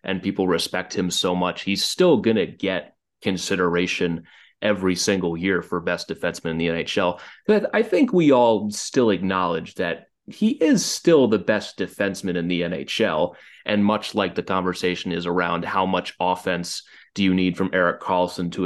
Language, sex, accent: English, male, American